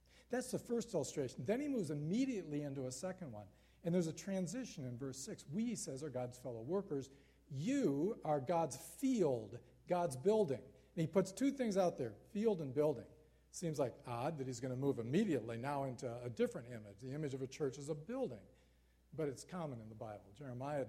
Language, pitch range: English, 125-180 Hz